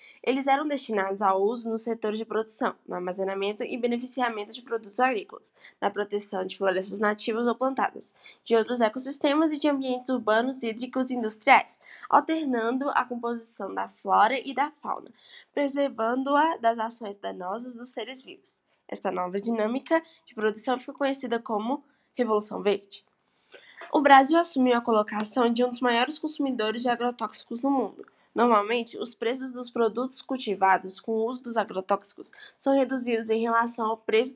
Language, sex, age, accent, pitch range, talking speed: Portuguese, female, 10-29, Brazilian, 215-260 Hz, 155 wpm